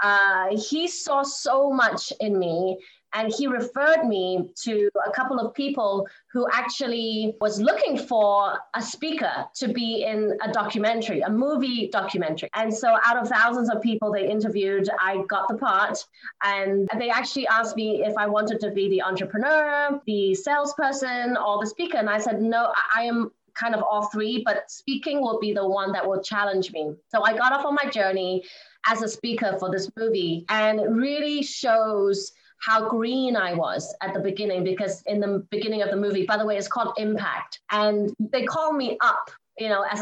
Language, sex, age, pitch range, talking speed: English, female, 20-39, 205-245 Hz, 190 wpm